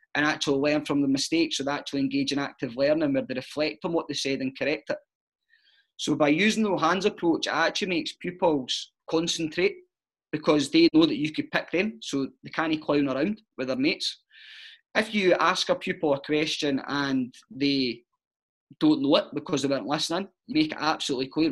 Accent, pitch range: British, 140-200 Hz